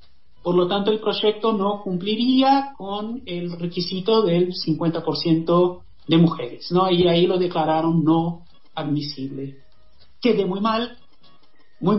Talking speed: 125 wpm